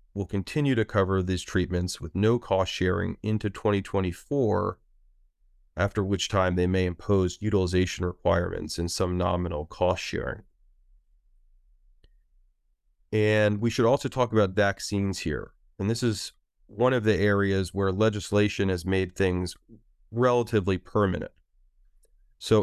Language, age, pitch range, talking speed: English, 30-49, 90-105 Hz, 125 wpm